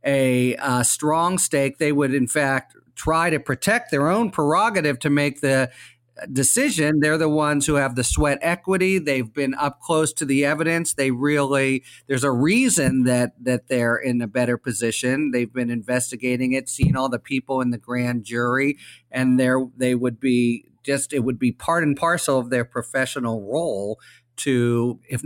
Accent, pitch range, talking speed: American, 120-145 Hz, 180 wpm